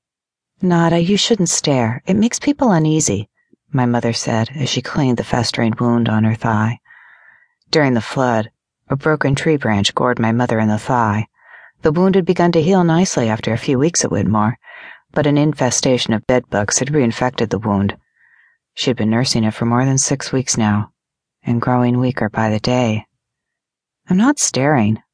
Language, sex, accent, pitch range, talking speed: English, female, American, 110-140 Hz, 180 wpm